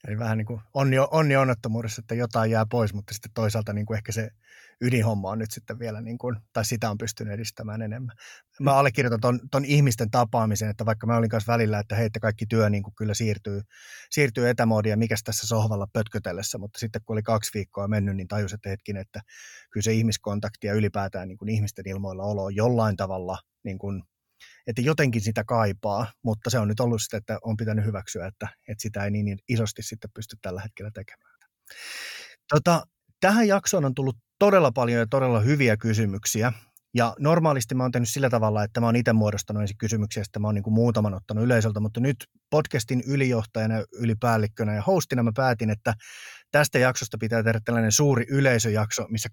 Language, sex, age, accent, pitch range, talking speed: Finnish, male, 30-49, native, 105-125 Hz, 190 wpm